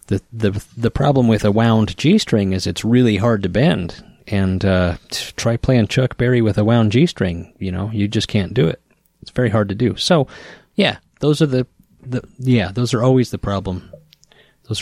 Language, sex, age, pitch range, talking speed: English, male, 30-49, 95-130 Hz, 205 wpm